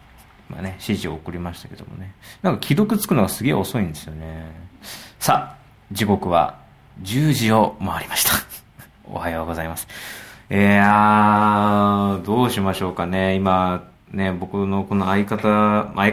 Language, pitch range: Japanese, 90-135 Hz